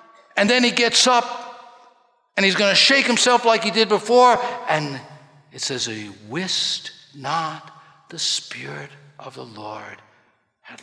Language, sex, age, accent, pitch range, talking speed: English, male, 60-79, American, 125-210 Hz, 150 wpm